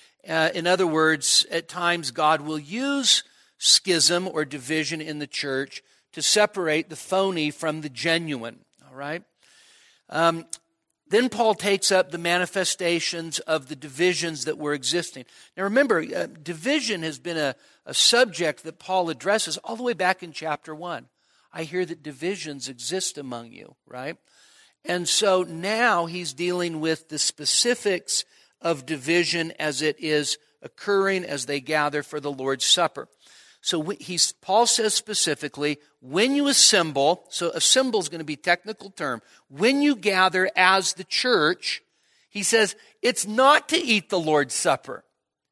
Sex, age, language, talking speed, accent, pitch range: male, 50-69, English, 155 wpm, American, 155-200 Hz